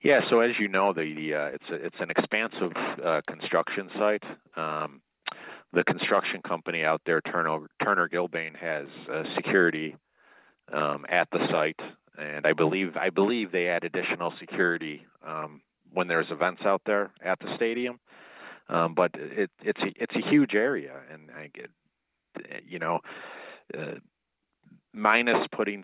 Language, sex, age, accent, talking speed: English, male, 40-59, American, 155 wpm